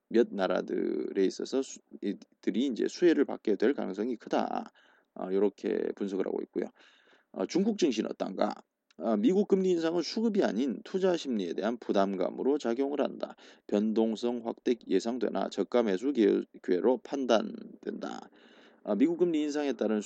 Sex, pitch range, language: male, 105-170 Hz, Korean